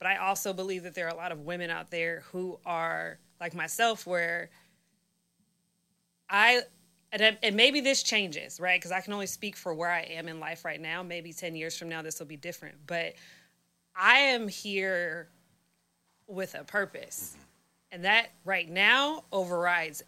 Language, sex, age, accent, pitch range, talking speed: English, female, 20-39, American, 170-205 Hz, 175 wpm